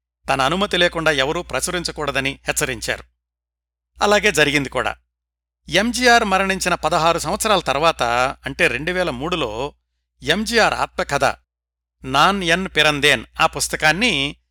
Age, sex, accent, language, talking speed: 60-79, male, native, Telugu, 90 wpm